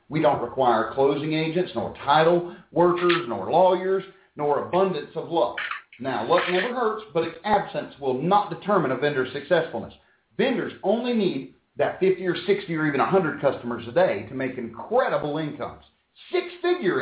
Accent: American